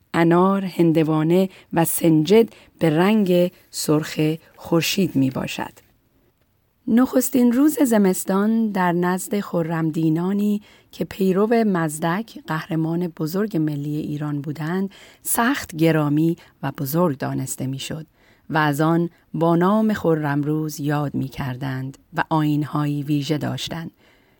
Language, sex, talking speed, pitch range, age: Persian, female, 110 wpm, 150-195 Hz, 40-59